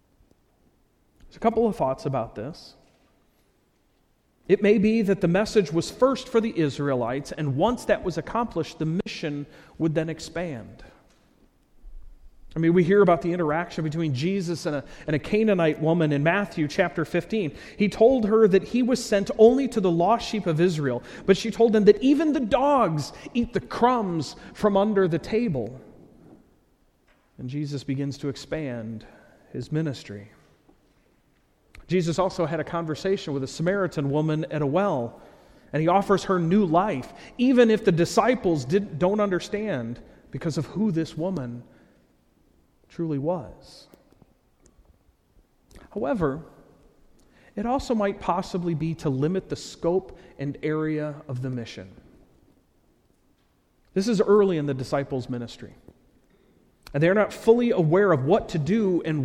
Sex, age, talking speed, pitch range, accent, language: male, 40-59, 145 wpm, 145-205 Hz, American, English